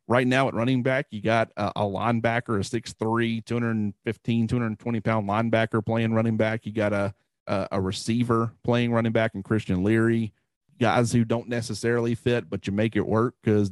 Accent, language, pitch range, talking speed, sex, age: American, English, 105-120 Hz, 195 wpm, male, 40-59